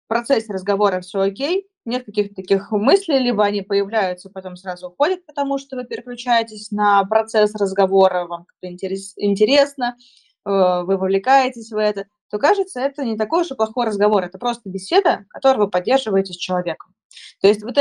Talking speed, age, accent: 165 wpm, 20-39, native